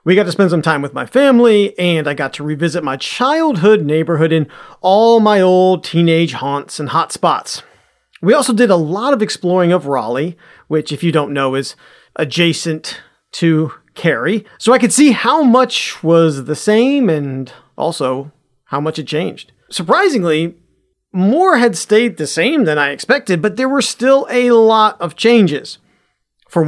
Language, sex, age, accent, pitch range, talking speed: English, male, 40-59, American, 150-215 Hz, 175 wpm